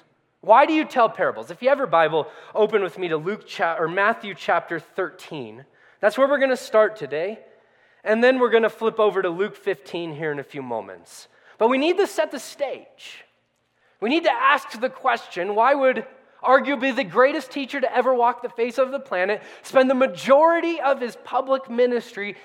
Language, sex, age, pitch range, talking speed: English, male, 20-39, 195-280 Hz, 200 wpm